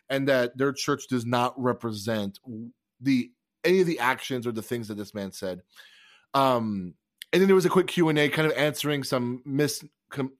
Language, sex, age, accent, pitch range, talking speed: English, male, 20-39, American, 120-150 Hz, 190 wpm